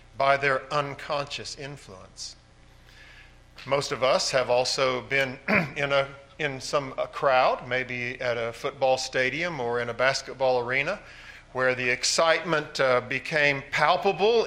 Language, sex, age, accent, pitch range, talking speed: English, male, 50-69, American, 125-185 Hz, 135 wpm